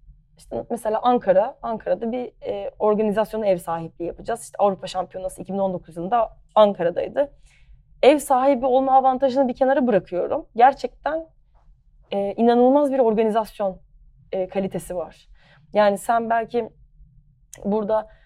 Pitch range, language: 185-230 Hz, Turkish